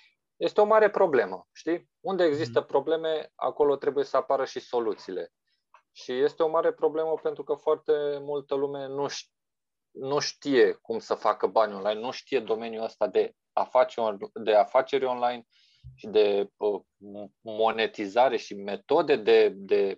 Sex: male